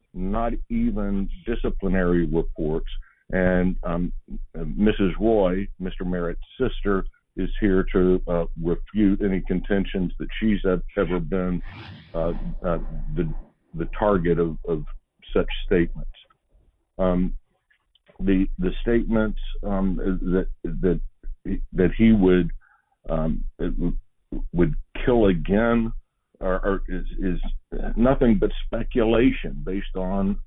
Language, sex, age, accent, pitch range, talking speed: English, male, 60-79, American, 90-110 Hz, 105 wpm